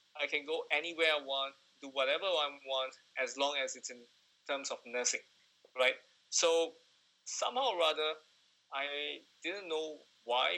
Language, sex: English, male